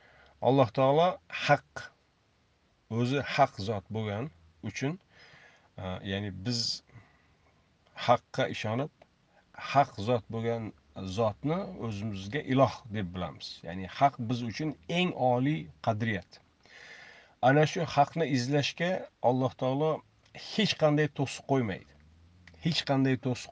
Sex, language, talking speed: male, Russian, 105 wpm